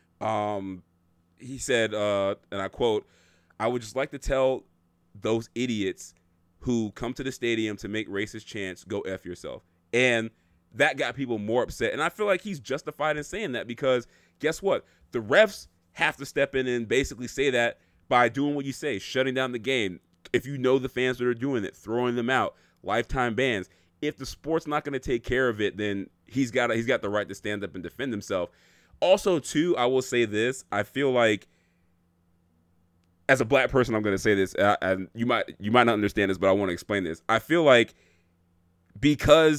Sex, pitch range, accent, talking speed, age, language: male, 95-130 Hz, American, 205 wpm, 30-49, English